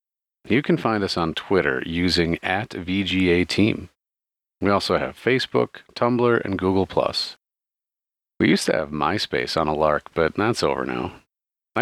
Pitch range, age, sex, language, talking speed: 80-105 Hz, 40-59, male, English, 150 wpm